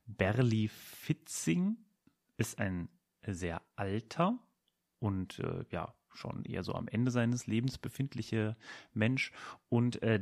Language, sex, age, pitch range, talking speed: German, male, 30-49, 100-125 Hz, 115 wpm